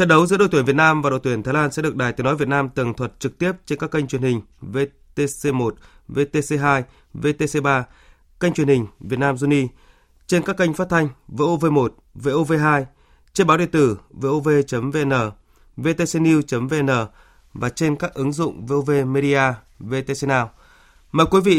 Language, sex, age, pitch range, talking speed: Vietnamese, male, 20-39, 130-155 Hz, 170 wpm